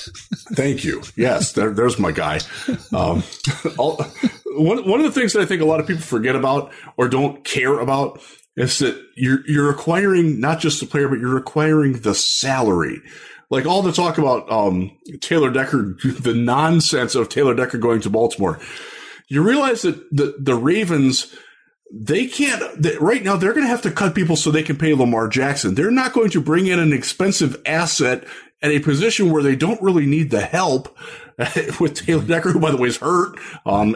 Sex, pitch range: male, 120-160 Hz